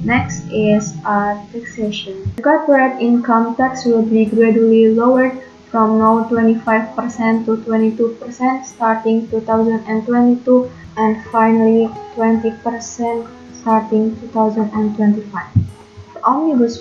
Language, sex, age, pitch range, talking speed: English, female, 20-39, 215-235 Hz, 95 wpm